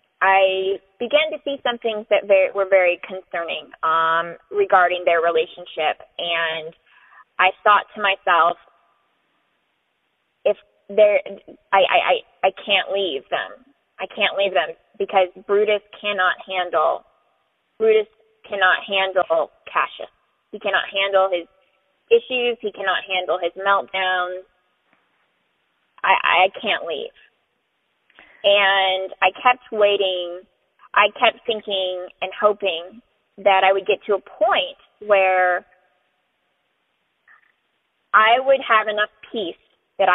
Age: 20-39